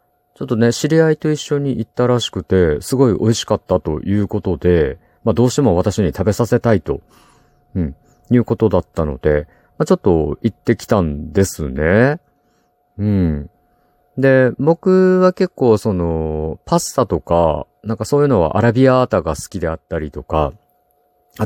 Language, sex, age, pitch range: Japanese, male, 50-69, 85-125 Hz